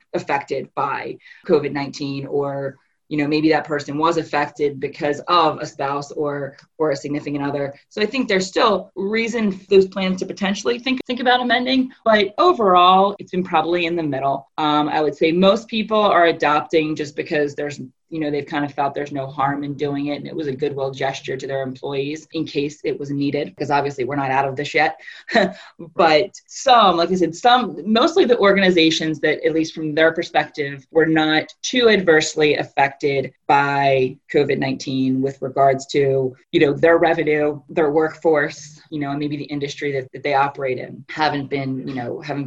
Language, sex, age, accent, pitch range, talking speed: English, female, 20-39, American, 140-170 Hz, 190 wpm